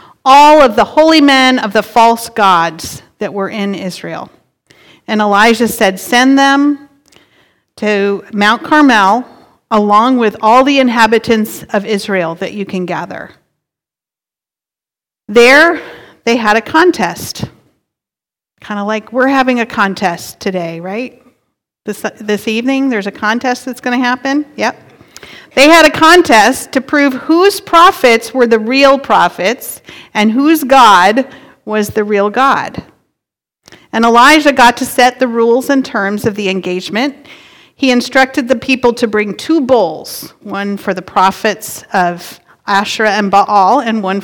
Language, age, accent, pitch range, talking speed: English, 40-59, American, 205-270 Hz, 145 wpm